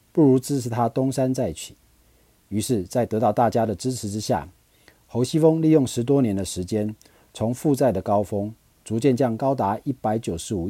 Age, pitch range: 50-69, 95-125 Hz